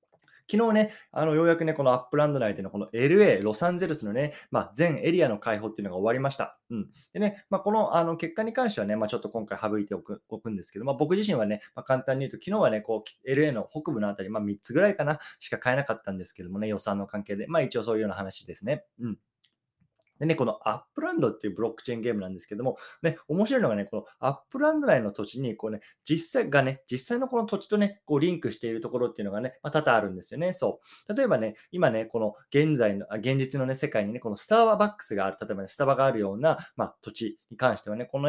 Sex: male